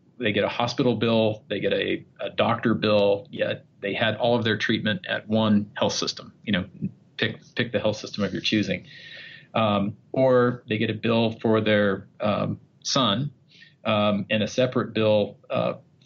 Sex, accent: male, American